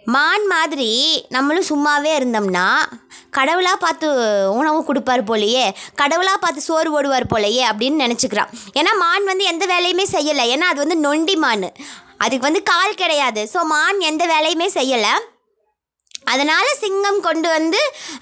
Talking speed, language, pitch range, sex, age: 135 wpm, Tamil, 270-355 Hz, male, 20-39